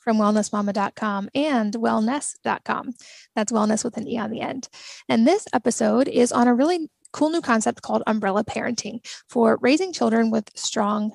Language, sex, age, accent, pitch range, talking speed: English, female, 10-29, American, 215-255 Hz, 160 wpm